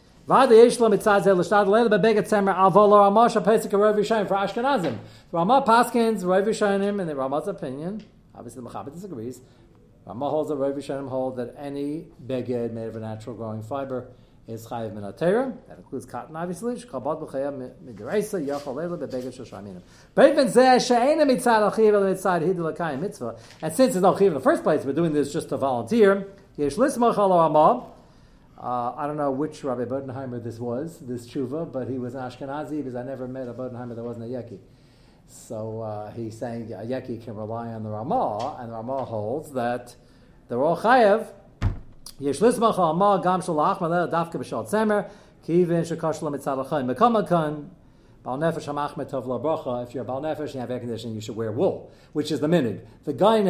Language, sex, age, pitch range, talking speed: English, male, 40-59, 125-195 Hz, 120 wpm